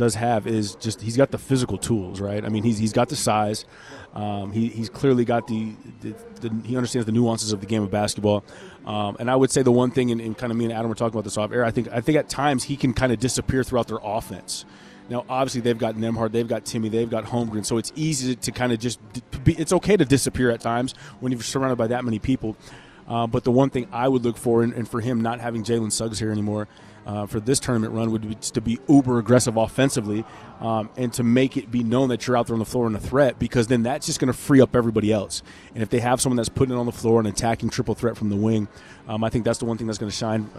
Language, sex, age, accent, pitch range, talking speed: English, male, 30-49, American, 110-125 Hz, 275 wpm